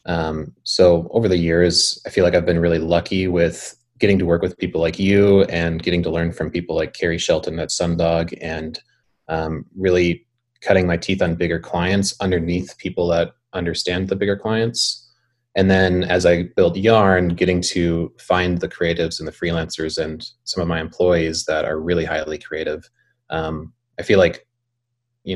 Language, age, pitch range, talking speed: English, 20-39, 85-100 Hz, 180 wpm